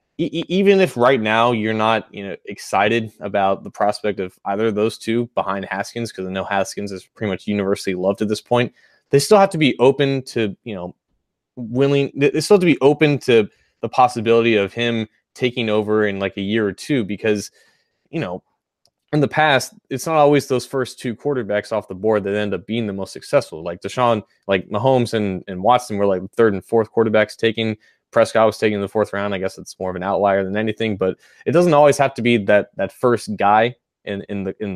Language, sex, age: English, male, 20-39